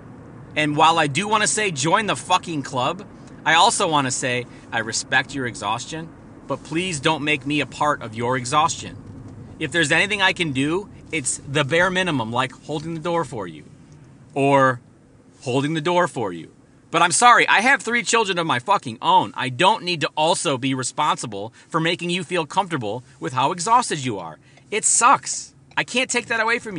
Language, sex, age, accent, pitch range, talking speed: English, male, 40-59, American, 135-190 Hz, 195 wpm